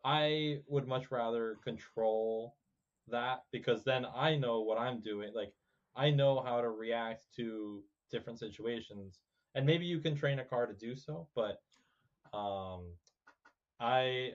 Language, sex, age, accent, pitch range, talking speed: English, male, 20-39, American, 105-130 Hz, 145 wpm